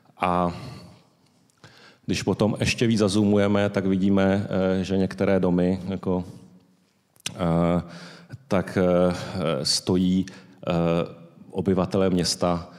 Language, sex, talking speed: Czech, male, 75 wpm